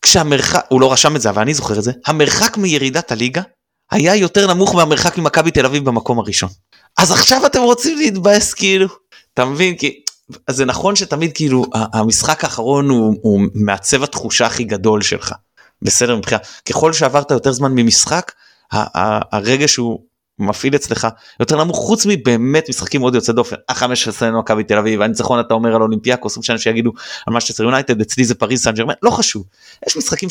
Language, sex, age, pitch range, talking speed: Hebrew, male, 30-49, 115-155 Hz, 180 wpm